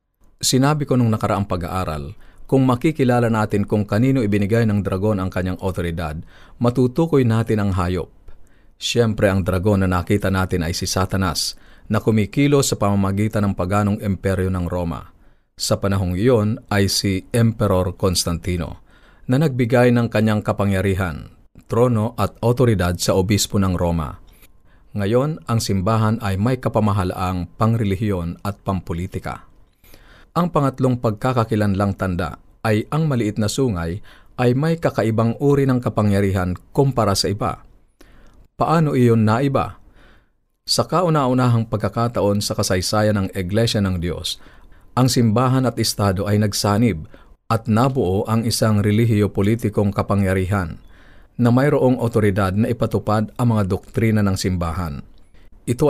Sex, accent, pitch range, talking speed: male, native, 95-115 Hz, 130 wpm